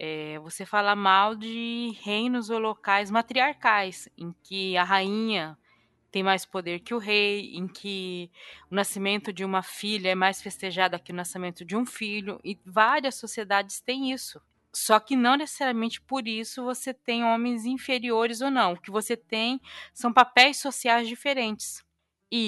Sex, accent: female, Brazilian